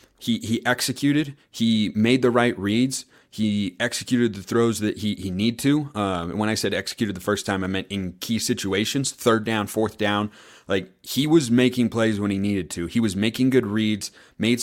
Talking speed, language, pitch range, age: 205 wpm, English, 105-125 Hz, 30-49